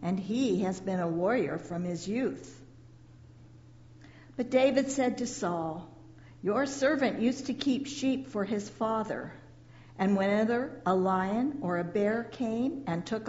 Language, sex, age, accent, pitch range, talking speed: English, female, 60-79, American, 170-230 Hz, 150 wpm